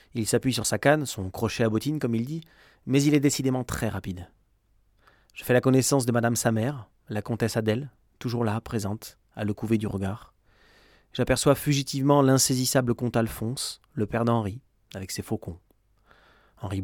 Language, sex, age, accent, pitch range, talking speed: English, male, 30-49, French, 100-130 Hz, 175 wpm